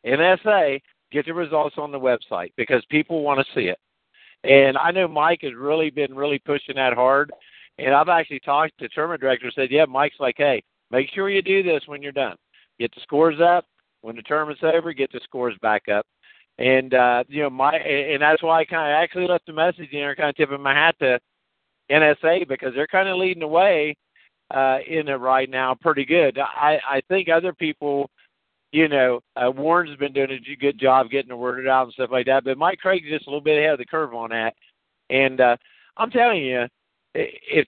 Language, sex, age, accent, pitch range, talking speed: English, male, 50-69, American, 130-165 Hz, 220 wpm